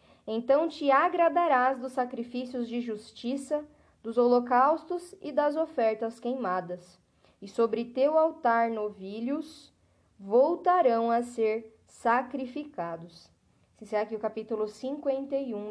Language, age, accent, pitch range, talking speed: Portuguese, 10-29, Brazilian, 220-265 Hz, 105 wpm